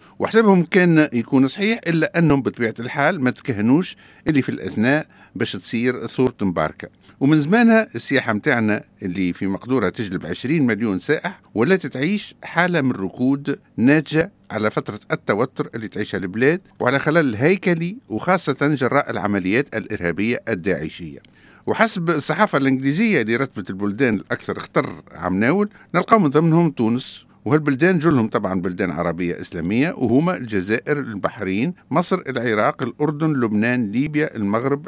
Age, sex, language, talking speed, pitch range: 60-79, male, French, 130 wpm, 105-155 Hz